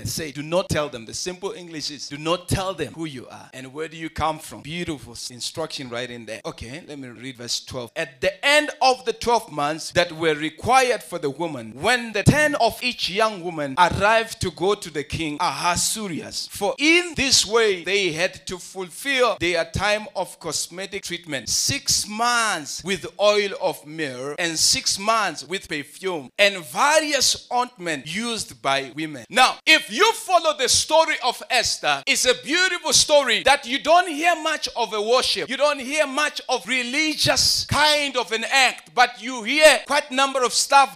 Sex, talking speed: male, 190 wpm